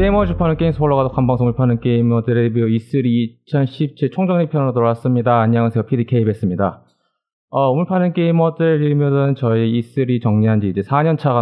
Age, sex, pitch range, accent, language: 20-39, male, 95-130 Hz, native, Korean